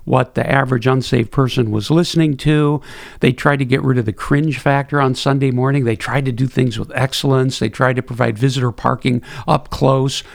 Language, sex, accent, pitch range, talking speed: English, male, American, 125-145 Hz, 205 wpm